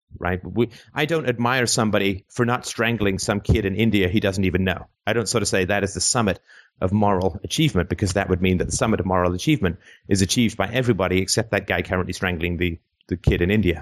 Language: English